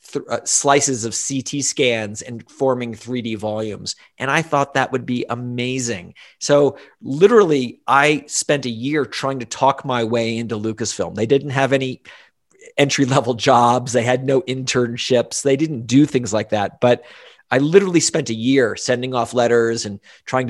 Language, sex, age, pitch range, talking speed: English, male, 40-59, 115-140 Hz, 165 wpm